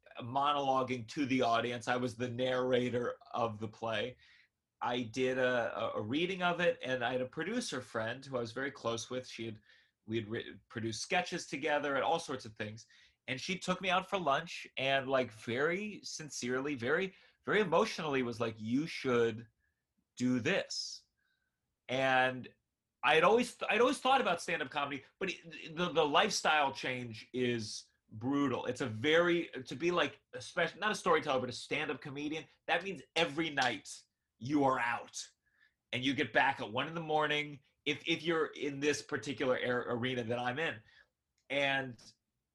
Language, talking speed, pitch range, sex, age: English, 175 wpm, 125-160 Hz, male, 30-49